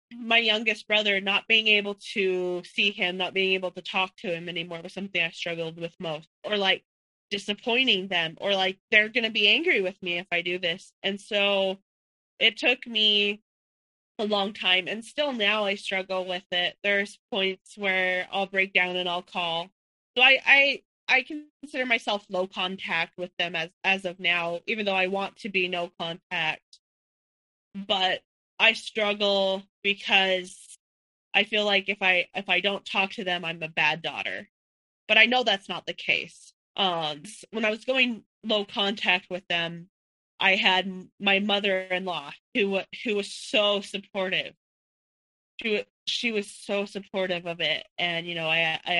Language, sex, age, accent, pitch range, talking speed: English, female, 20-39, American, 180-210 Hz, 175 wpm